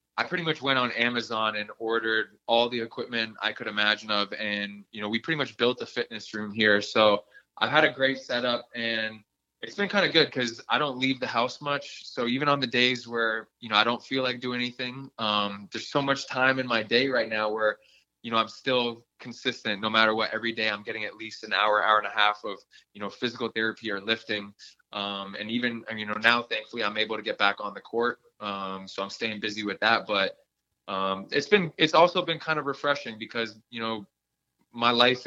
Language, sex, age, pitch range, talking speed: English, male, 20-39, 110-125 Hz, 230 wpm